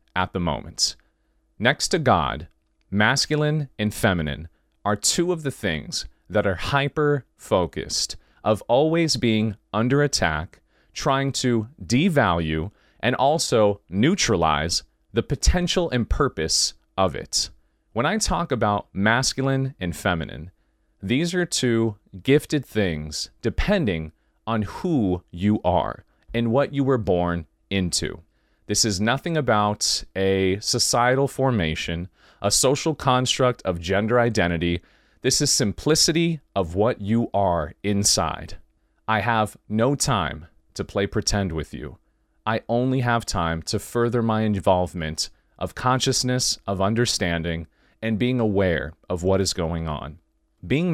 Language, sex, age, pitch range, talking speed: English, male, 30-49, 85-125 Hz, 125 wpm